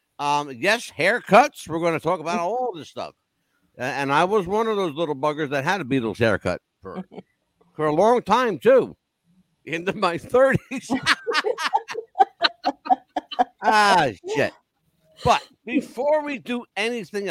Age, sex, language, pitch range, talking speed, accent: 60-79, male, English, 150-230 Hz, 140 wpm, American